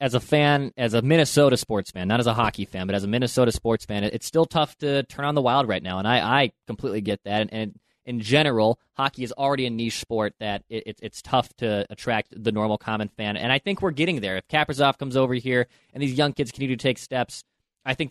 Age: 20-39